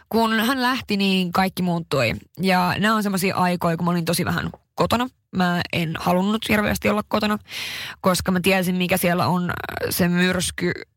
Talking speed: 170 wpm